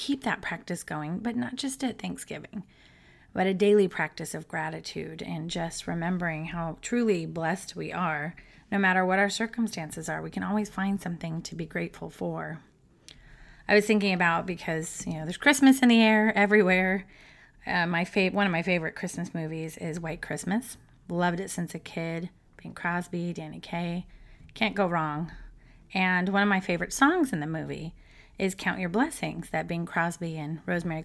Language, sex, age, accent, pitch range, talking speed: English, female, 30-49, American, 165-225 Hz, 180 wpm